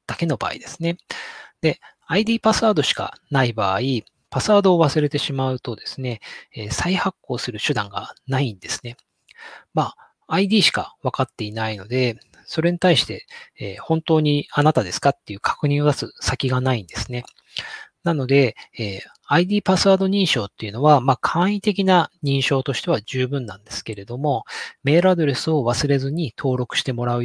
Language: Japanese